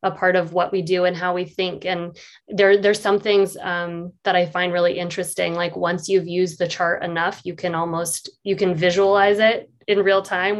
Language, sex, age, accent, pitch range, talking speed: English, female, 20-39, American, 175-200 Hz, 210 wpm